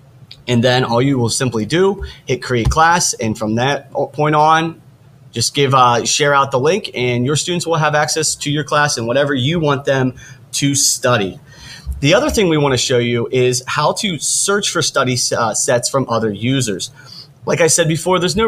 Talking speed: 200 wpm